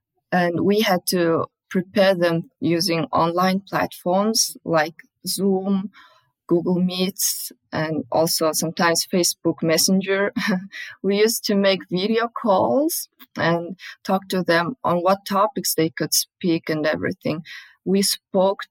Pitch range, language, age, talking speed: 165-195 Hz, English, 20-39, 120 wpm